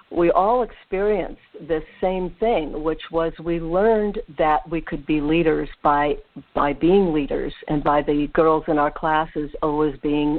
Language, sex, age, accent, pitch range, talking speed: English, female, 60-79, American, 155-195 Hz, 160 wpm